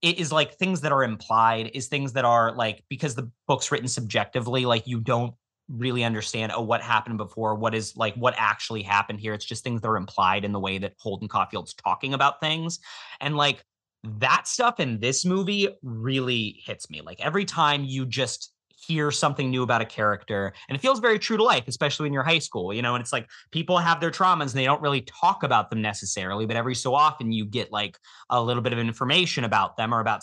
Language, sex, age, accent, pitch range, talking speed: English, male, 30-49, American, 115-160 Hz, 225 wpm